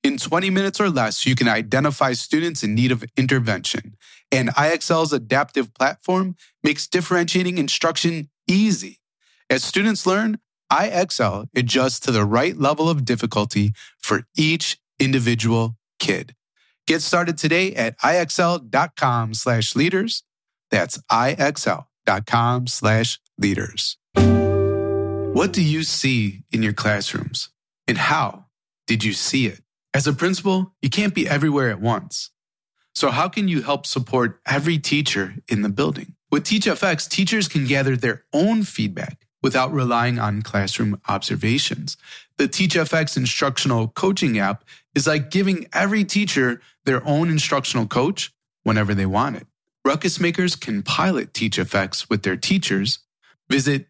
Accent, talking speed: American, 130 wpm